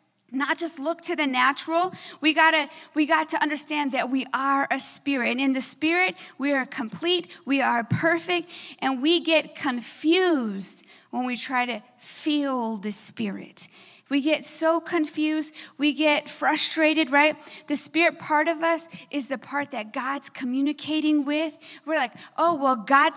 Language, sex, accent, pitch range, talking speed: English, female, American, 255-335 Hz, 165 wpm